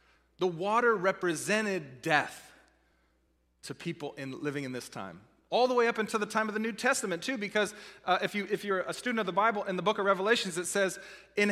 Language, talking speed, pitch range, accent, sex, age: English, 220 wpm, 165-225 Hz, American, male, 30-49